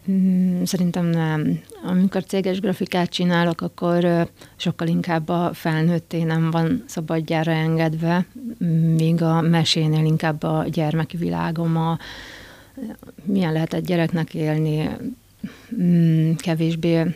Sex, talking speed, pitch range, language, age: female, 100 wpm, 160-180 Hz, Hungarian, 30-49